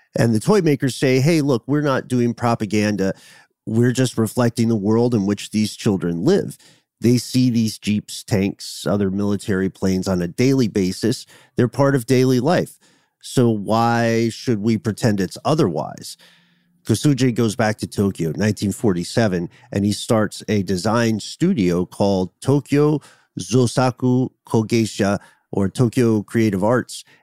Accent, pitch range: American, 100-125 Hz